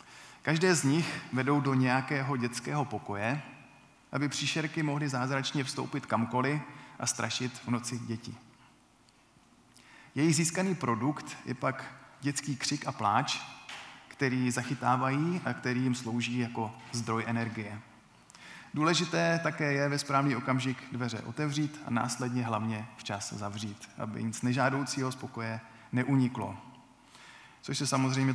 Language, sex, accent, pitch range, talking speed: Czech, male, native, 115-145 Hz, 125 wpm